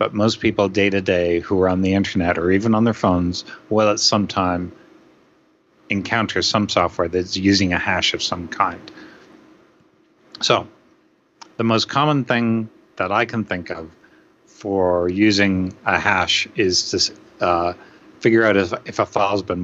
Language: English